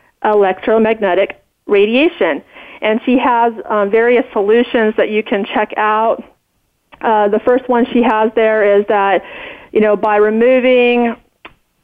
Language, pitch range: English, 215-245 Hz